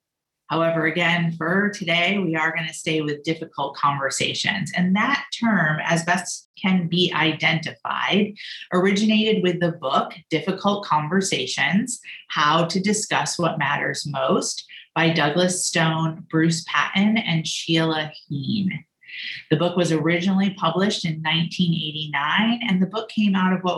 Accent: American